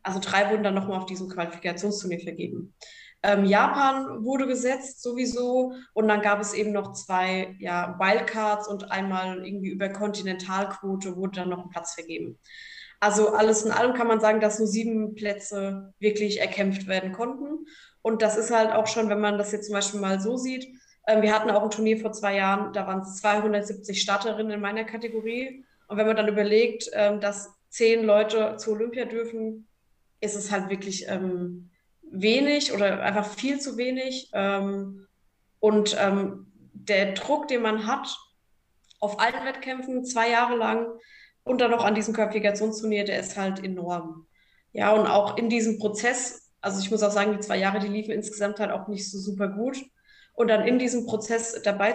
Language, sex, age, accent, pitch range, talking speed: German, female, 20-39, German, 195-230 Hz, 180 wpm